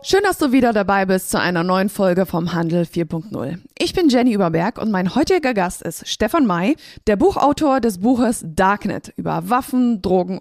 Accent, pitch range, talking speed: German, 180-255 Hz, 185 wpm